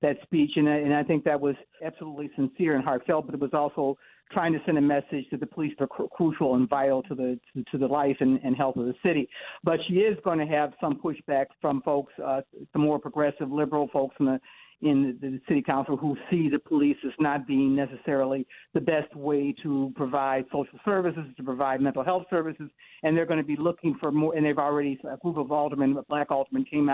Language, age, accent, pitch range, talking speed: English, 60-79, American, 140-160 Hz, 230 wpm